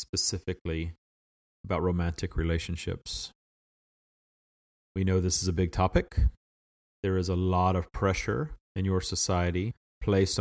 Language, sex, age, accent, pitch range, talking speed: English, male, 40-59, American, 85-100 Hz, 120 wpm